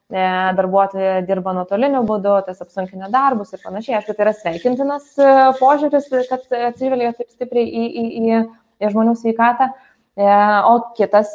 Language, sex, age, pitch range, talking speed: English, female, 20-39, 205-250 Hz, 135 wpm